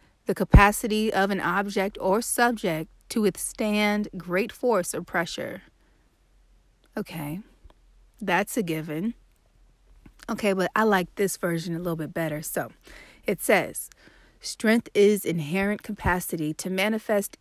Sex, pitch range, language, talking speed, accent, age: female, 170-200 Hz, English, 125 wpm, American, 30-49